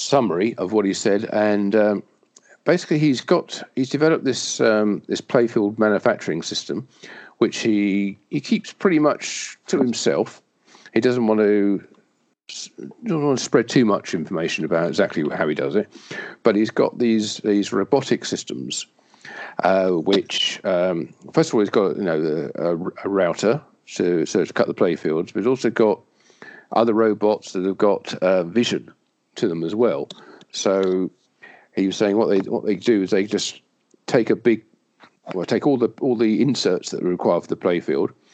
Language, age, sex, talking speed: English, 50-69, male, 180 wpm